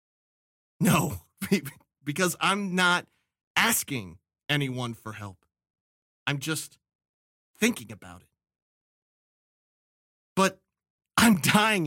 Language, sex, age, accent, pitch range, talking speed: English, male, 30-49, American, 125-190 Hz, 80 wpm